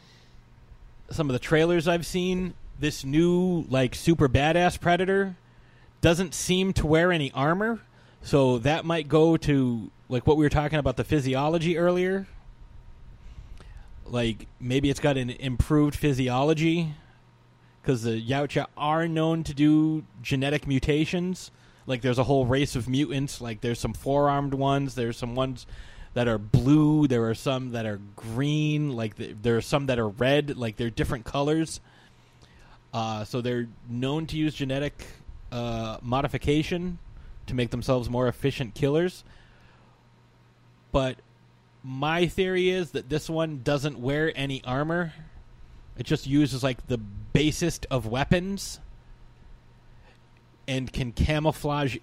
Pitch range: 120-155 Hz